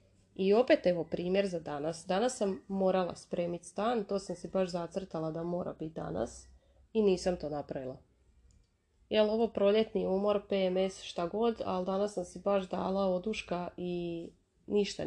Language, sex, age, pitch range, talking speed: Croatian, female, 30-49, 165-200 Hz, 160 wpm